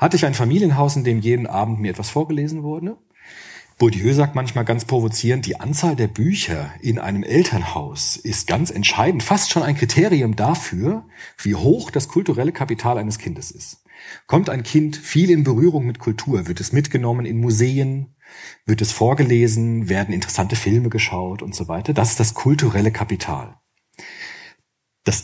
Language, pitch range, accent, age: German, 110-150 Hz, German, 40-59